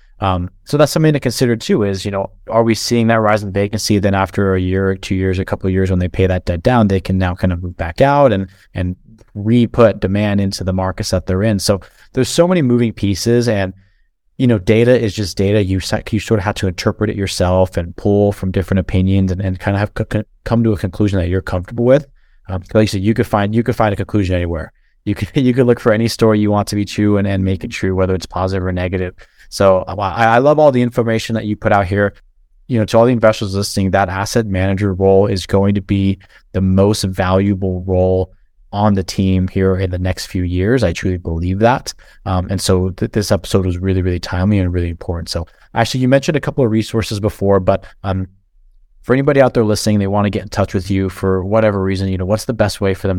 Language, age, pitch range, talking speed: English, 30-49, 95-110 Hz, 250 wpm